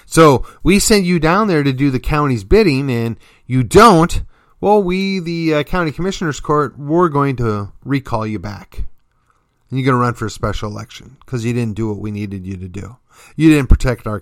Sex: male